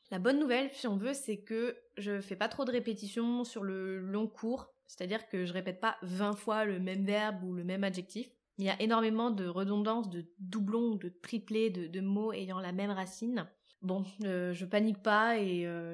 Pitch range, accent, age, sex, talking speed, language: 190-235 Hz, French, 20-39, female, 210 wpm, French